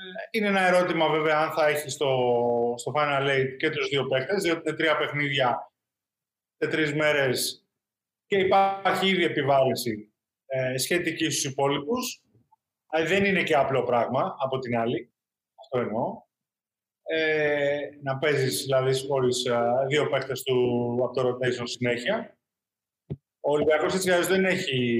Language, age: Greek, 30-49